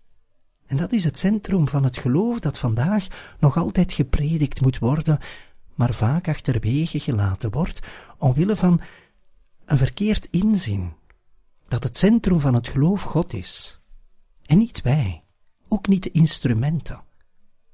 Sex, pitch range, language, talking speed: male, 105-165 Hz, Dutch, 135 wpm